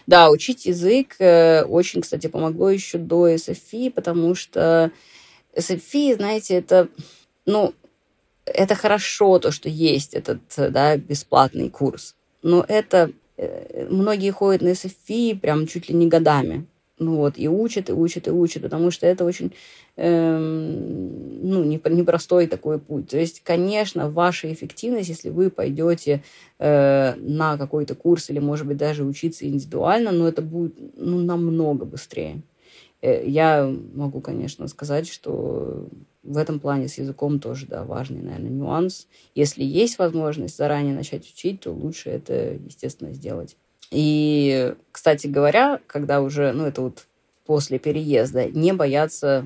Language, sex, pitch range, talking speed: Russian, female, 145-175 Hz, 140 wpm